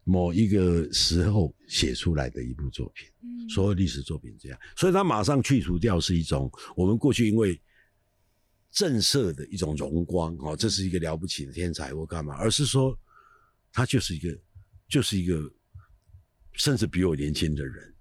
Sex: male